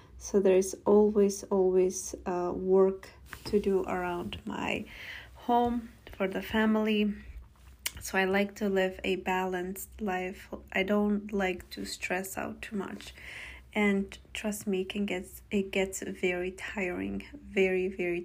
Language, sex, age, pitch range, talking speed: English, female, 20-39, 185-210 Hz, 140 wpm